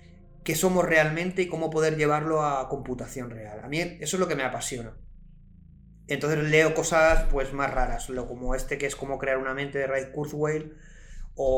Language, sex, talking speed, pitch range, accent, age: Spanish, male, 185 wpm, 130-155 Hz, Spanish, 30-49